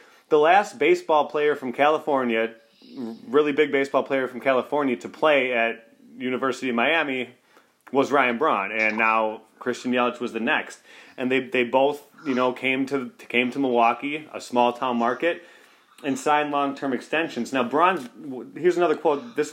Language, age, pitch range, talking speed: English, 30-49, 120-145 Hz, 160 wpm